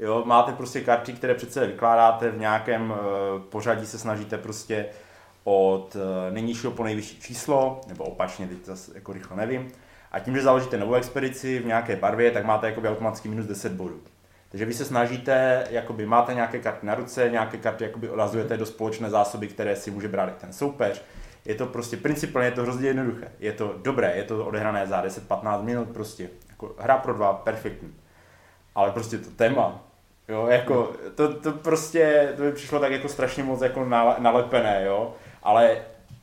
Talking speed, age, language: 180 wpm, 20-39, Czech